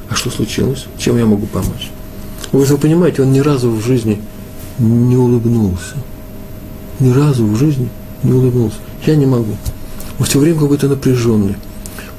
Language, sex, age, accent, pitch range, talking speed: Russian, male, 50-69, native, 105-140 Hz, 155 wpm